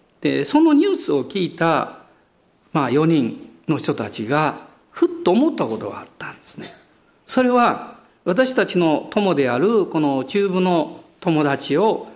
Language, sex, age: Japanese, male, 50-69